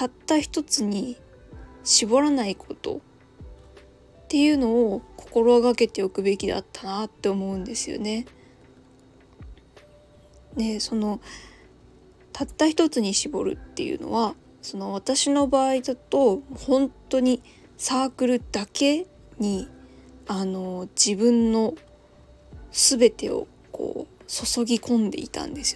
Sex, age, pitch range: female, 20-39, 210-255 Hz